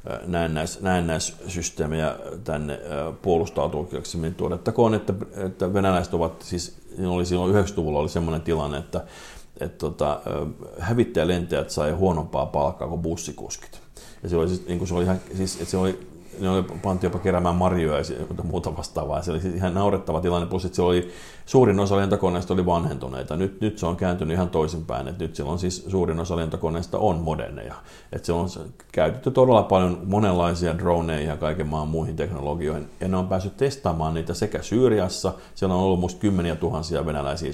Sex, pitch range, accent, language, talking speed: male, 80-95 Hz, native, Finnish, 150 wpm